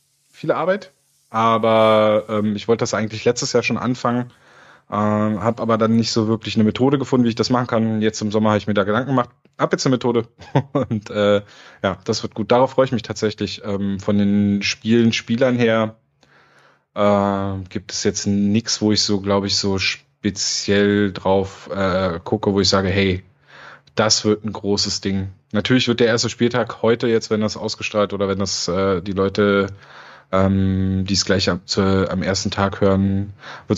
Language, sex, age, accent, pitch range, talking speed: German, male, 20-39, German, 100-115 Hz, 190 wpm